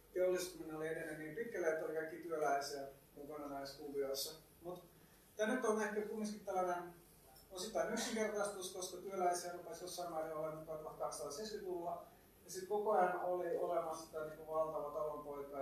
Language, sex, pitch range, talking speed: Finnish, male, 150-180 Hz, 140 wpm